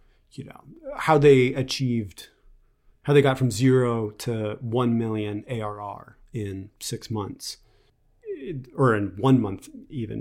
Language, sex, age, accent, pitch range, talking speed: English, male, 30-49, American, 105-130 Hz, 130 wpm